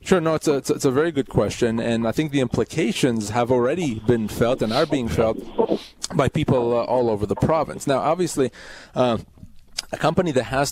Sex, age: male, 30-49